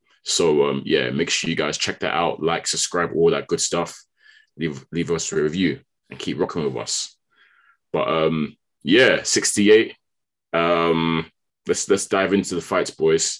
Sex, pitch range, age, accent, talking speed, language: male, 80-115 Hz, 20-39, British, 170 wpm, English